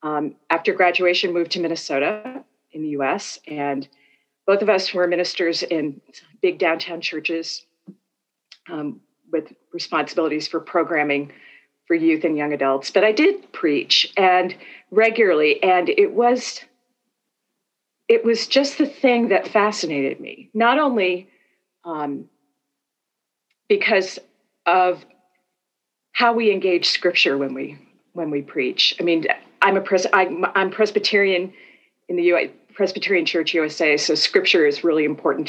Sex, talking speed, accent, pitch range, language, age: female, 135 wpm, American, 165-220 Hz, English, 40-59